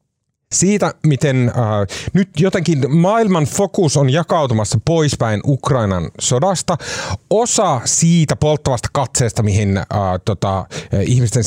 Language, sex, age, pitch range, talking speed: Finnish, male, 30-49, 115-150 Hz, 105 wpm